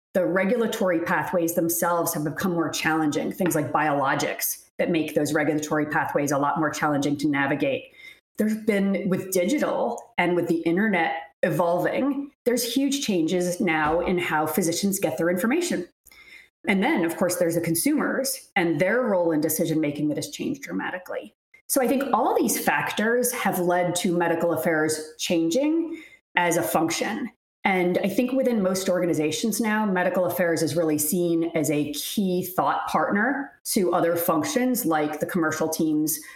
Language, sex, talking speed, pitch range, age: English, female, 160 wpm, 155-210 Hz, 30-49